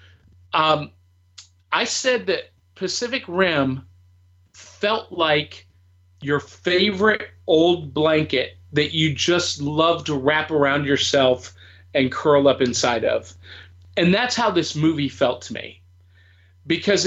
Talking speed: 120 wpm